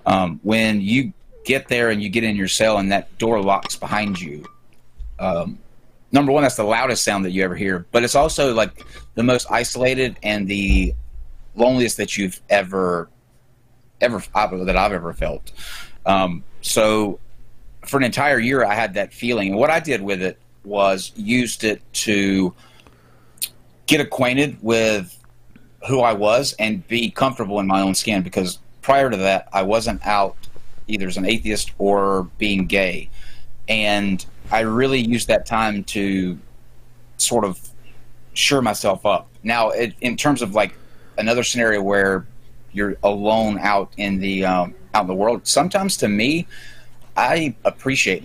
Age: 30-49